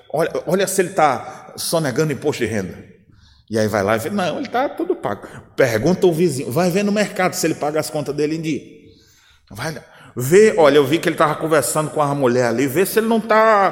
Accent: Brazilian